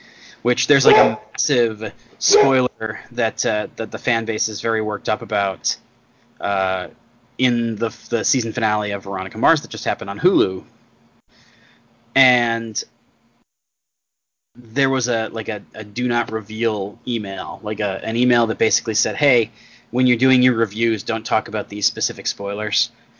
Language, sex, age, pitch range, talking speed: English, male, 20-39, 110-125 Hz, 160 wpm